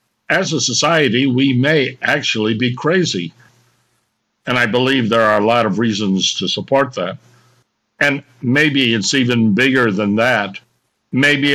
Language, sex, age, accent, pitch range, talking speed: English, male, 60-79, American, 115-140 Hz, 145 wpm